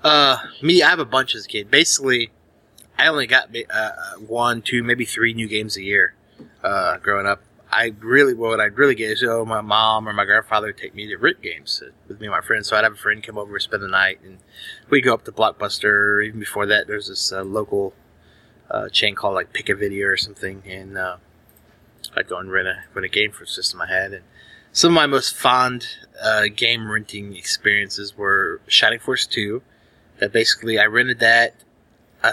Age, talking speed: 30-49, 220 wpm